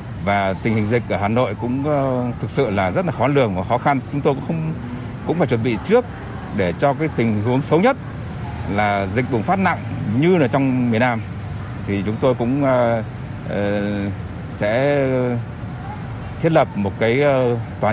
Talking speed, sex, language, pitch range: 185 wpm, male, Vietnamese, 105-135 Hz